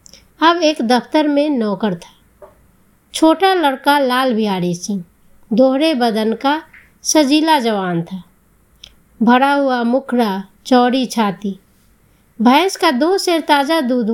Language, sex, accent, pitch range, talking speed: Hindi, female, native, 230-310 Hz, 120 wpm